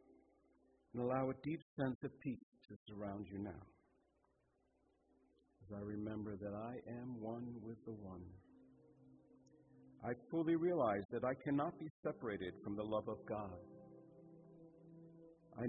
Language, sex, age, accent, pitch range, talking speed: English, male, 50-69, American, 95-130 Hz, 135 wpm